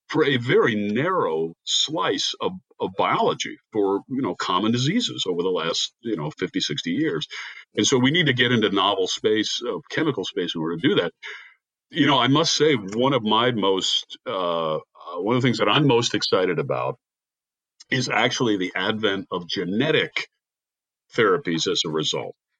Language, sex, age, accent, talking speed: English, male, 50-69, American, 180 wpm